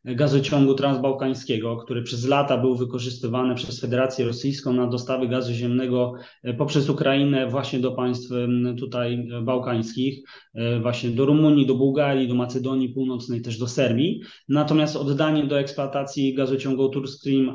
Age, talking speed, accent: 20-39, 135 wpm, native